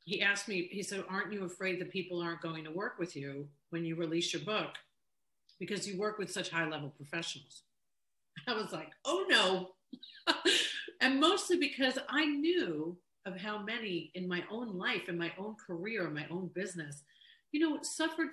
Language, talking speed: English, 185 wpm